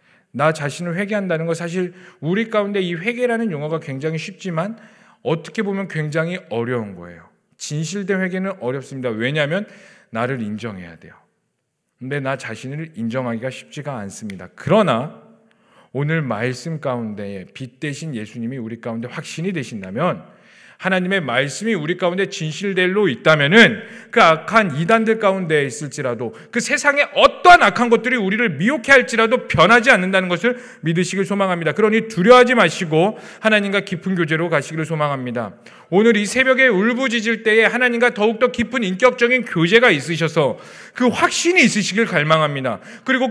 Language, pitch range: Korean, 155-230 Hz